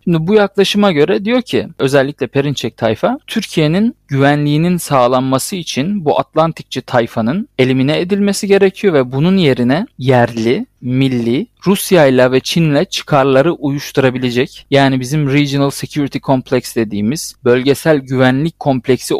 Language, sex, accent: Turkish, male, native